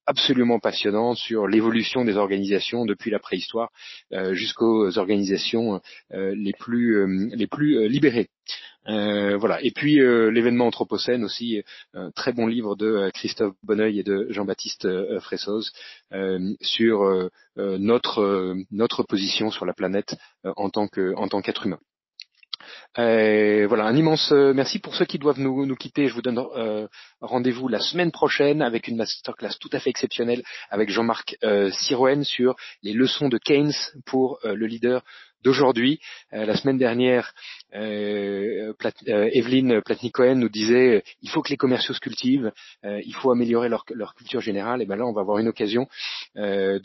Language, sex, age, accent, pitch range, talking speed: French, male, 30-49, French, 105-130 Hz, 160 wpm